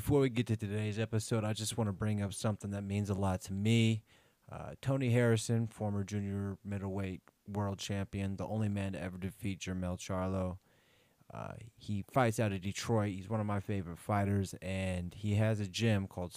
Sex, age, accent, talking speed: male, 30-49, American, 195 wpm